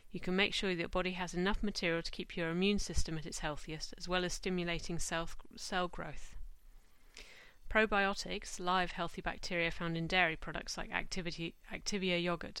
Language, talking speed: English, 170 wpm